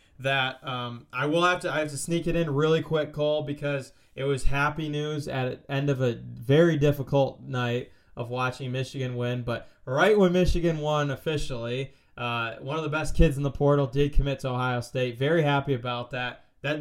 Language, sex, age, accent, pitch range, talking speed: English, male, 20-39, American, 125-150 Hz, 200 wpm